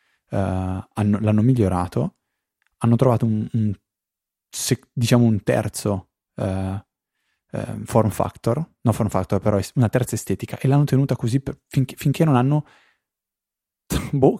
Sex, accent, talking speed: male, native, 145 wpm